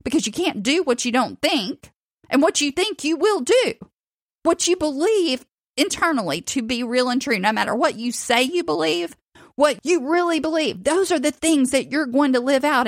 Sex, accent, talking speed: female, American, 210 wpm